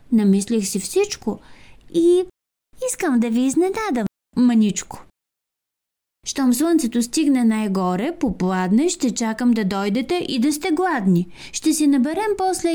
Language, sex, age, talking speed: Bulgarian, female, 20-39, 120 wpm